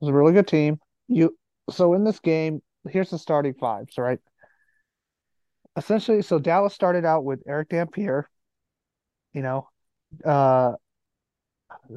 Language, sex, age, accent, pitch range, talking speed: English, male, 30-49, American, 135-170 Hz, 135 wpm